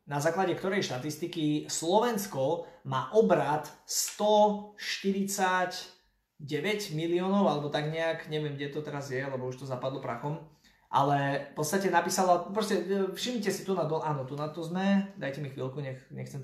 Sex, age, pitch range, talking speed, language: male, 20-39, 140-185 Hz, 155 wpm, Slovak